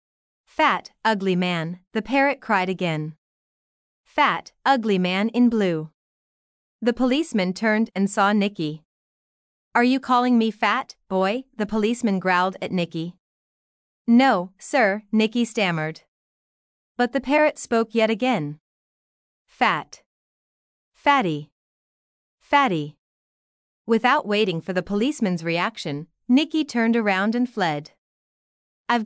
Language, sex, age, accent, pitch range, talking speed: English, female, 30-49, American, 185-245 Hz, 110 wpm